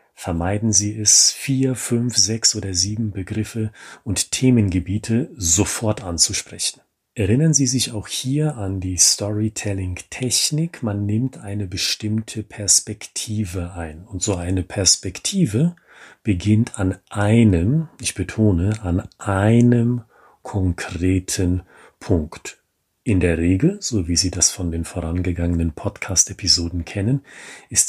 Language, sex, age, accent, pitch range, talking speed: German, male, 40-59, German, 95-120 Hz, 115 wpm